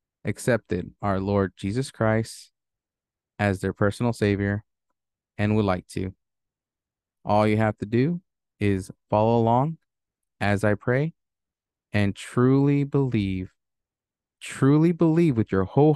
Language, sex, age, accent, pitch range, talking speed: English, male, 20-39, American, 100-120 Hz, 120 wpm